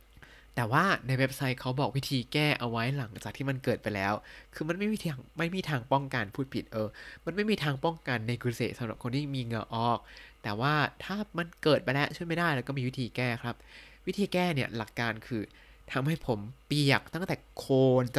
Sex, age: male, 20-39